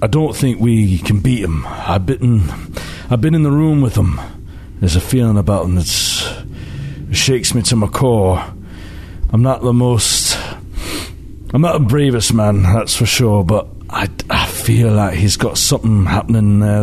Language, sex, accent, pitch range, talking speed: English, male, British, 90-120 Hz, 170 wpm